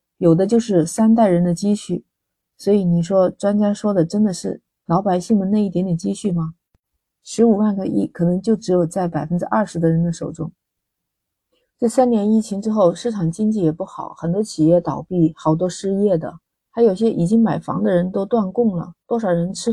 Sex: female